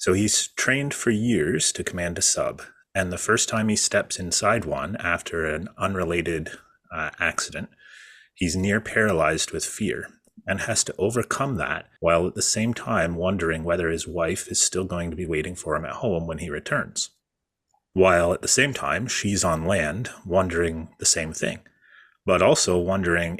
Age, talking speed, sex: 30-49, 175 wpm, male